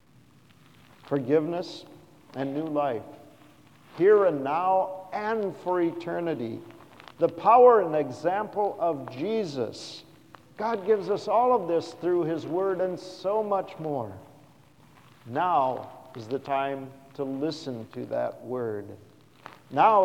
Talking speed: 115 wpm